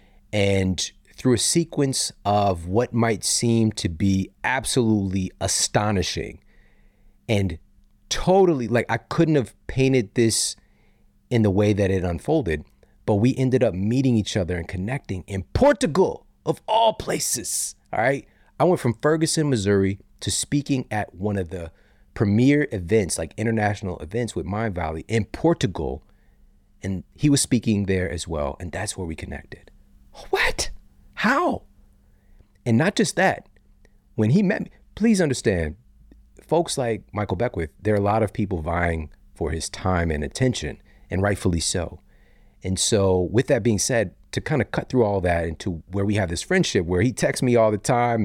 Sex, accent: male, American